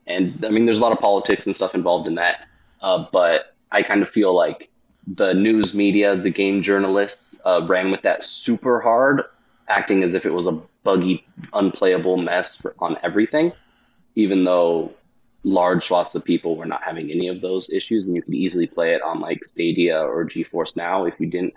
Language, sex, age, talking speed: English, male, 20-39, 200 wpm